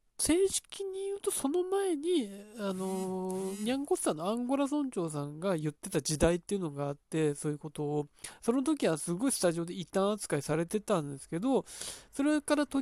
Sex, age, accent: male, 20-39, native